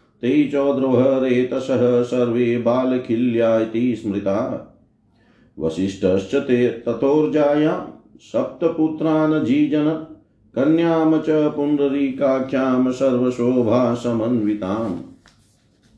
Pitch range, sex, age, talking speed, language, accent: 115-145 Hz, male, 50-69, 40 wpm, Hindi, native